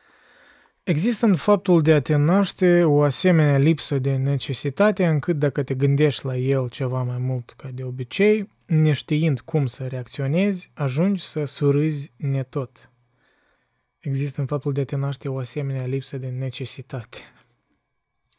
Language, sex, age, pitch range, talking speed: Romanian, male, 20-39, 130-160 Hz, 145 wpm